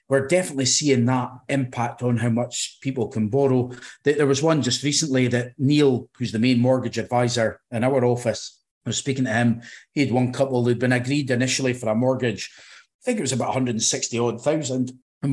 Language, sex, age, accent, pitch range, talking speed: English, male, 30-49, British, 120-140 Hz, 200 wpm